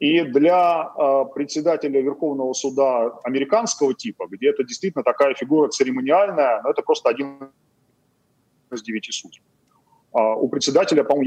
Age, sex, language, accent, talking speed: 30-49, male, Russian, native, 135 wpm